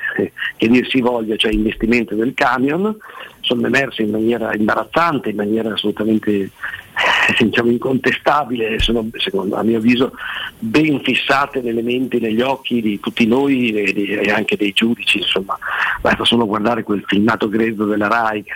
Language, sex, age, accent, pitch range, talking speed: Italian, male, 50-69, native, 105-125 Hz, 150 wpm